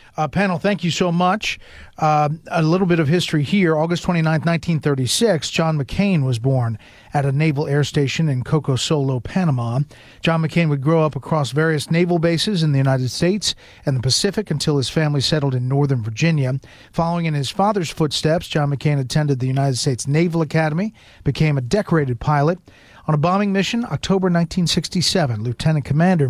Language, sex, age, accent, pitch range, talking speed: English, male, 40-59, American, 135-170 Hz, 175 wpm